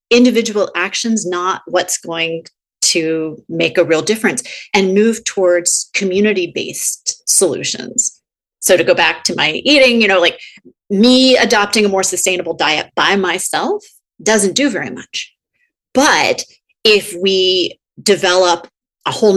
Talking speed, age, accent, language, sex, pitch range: 135 wpm, 30-49, American, English, female, 170-235 Hz